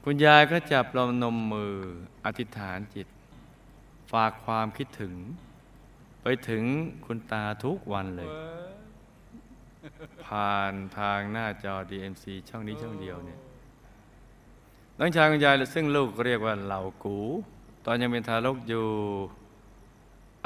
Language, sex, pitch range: Thai, male, 100-125 Hz